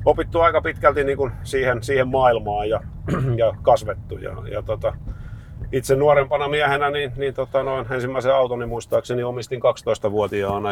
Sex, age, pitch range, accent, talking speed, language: male, 30-49, 100-120 Hz, native, 145 wpm, Finnish